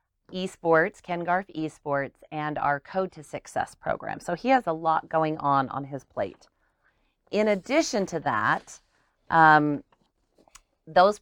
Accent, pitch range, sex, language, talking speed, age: American, 145-175 Hz, female, English, 140 wpm, 40-59